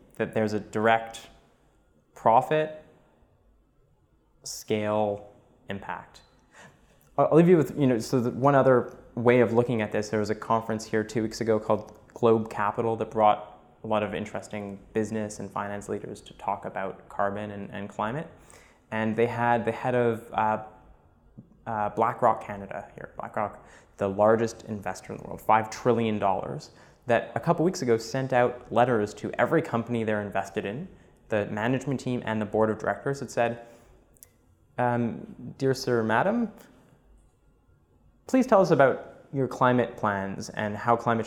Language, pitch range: English, 105-125 Hz